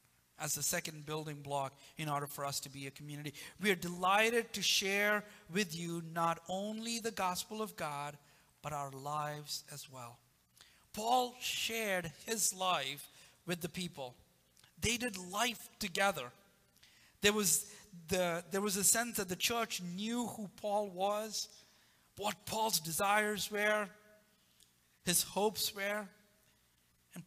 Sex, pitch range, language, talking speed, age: male, 145-200 Hz, English, 135 wpm, 50-69